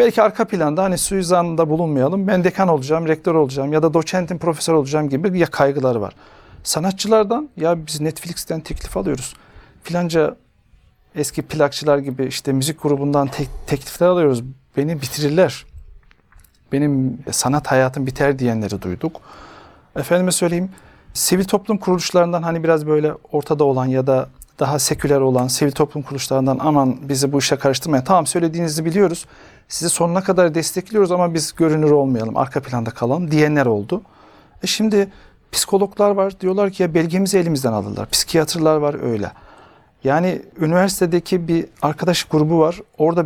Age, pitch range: 40-59, 140-175 Hz